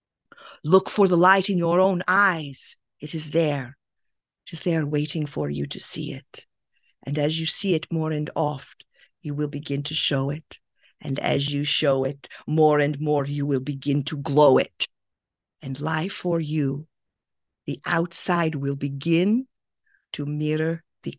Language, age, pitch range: English, 50-69, 145-170 Hz